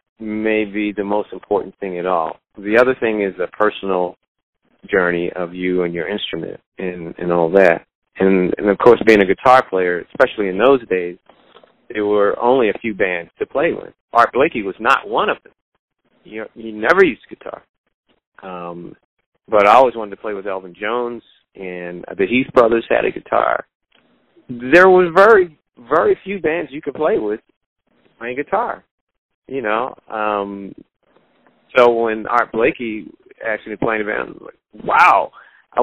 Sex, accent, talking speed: male, American, 170 wpm